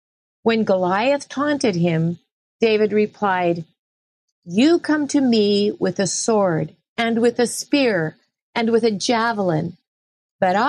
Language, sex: English, female